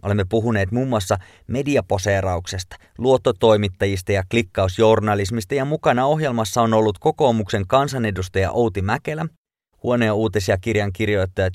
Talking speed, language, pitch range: 115 wpm, Finnish, 95-125 Hz